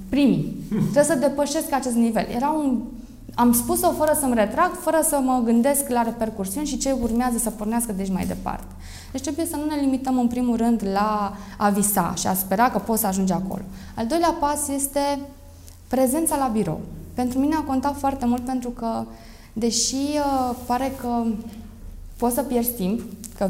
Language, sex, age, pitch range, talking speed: Romanian, female, 20-39, 200-275 Hz, 180 wpm